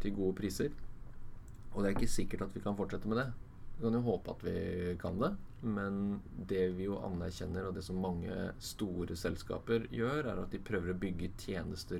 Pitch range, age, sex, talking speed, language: 90-115 Hz, 20-39, male, 205 wpm, English